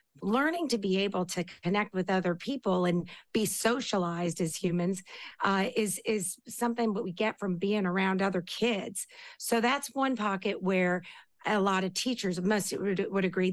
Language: English